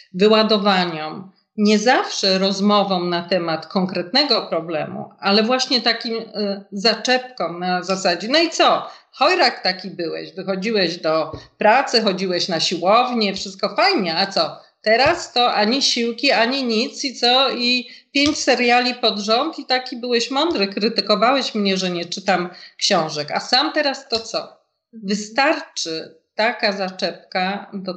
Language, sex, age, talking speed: Polish, female, 40-59, 135 wpm